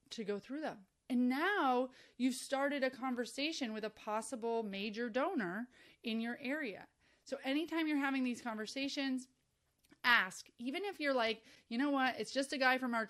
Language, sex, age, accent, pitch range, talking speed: English, female, 30-49, American, 220-275 Hz, 175 wpm